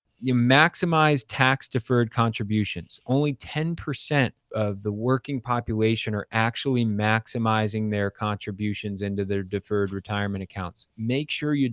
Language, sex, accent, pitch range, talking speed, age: English, male, American, 110-135 Hz, 125 wpm, 30-49